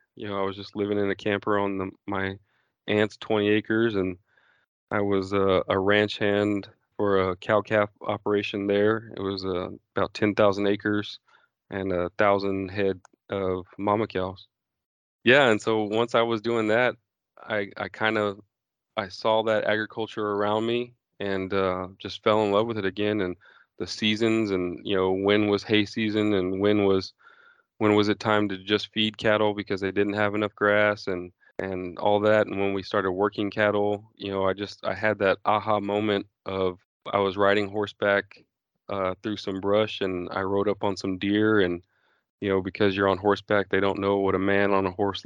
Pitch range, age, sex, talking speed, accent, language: 95-105 Hz, 20-39, male, 195 wpm, American, English